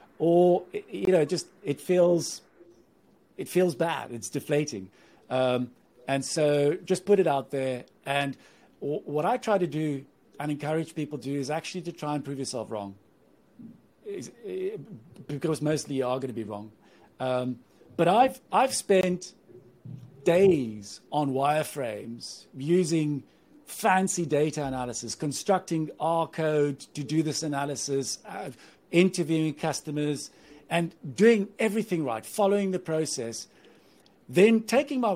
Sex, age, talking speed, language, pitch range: male, 40-59, 130 wpm, English, 130-170 Hz